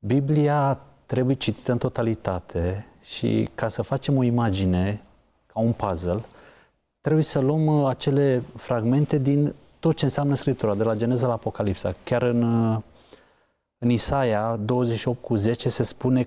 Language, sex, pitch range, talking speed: Romanian, male, 115-155 Hz, 135 wpm